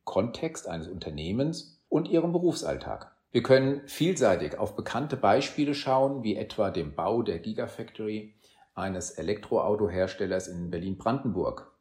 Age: 40-59